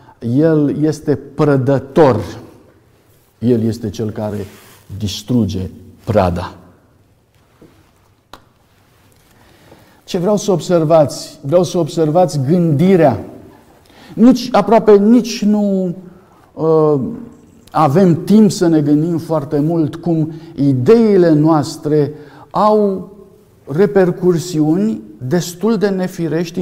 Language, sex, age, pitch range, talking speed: Romanian, male, 50-69, 120-175 Hz, 80 wpm